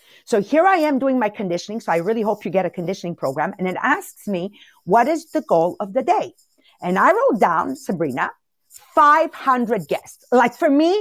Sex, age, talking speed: female, 50-69, 200 wpm